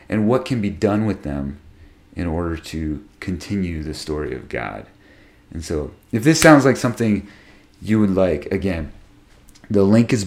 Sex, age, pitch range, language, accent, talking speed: male, 30-49, 85-110 Hz, English, American, 170 wpm